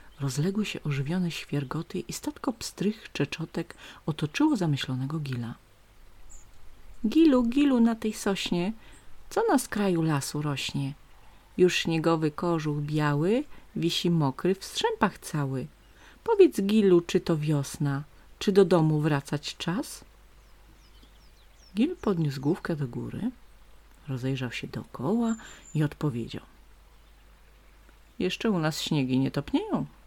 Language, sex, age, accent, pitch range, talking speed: Polish, female, 40-59, native, 135-210 Hz, 110 wpm